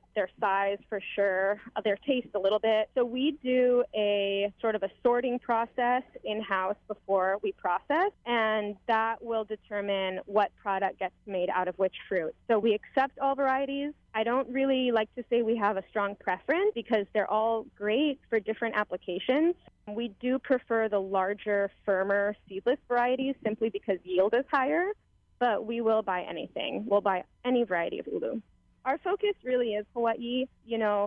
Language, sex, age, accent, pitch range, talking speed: English, female, 20-39, American, 205-250 Hz, 170 wpm